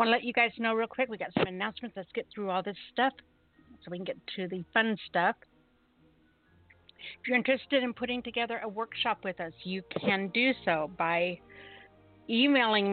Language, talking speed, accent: English, 200 wpm, American